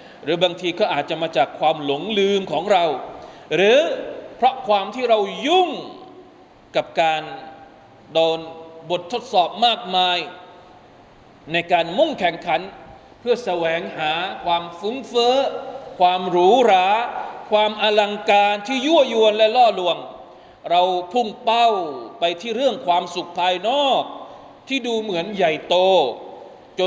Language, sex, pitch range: Thai, male, 170-240 Hz